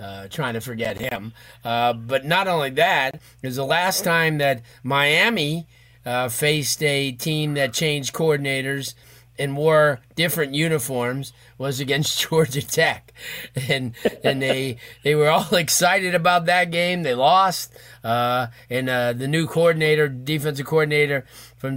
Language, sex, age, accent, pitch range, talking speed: English, male, 30-49, American, 125-155 Hz, 145 wpm